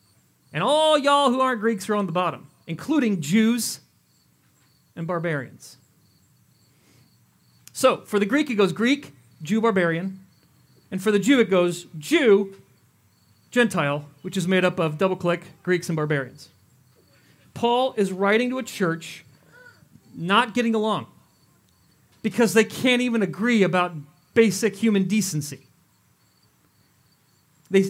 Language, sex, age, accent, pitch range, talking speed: English, male, 40-59, American, 160-235 Hz, 130 wpm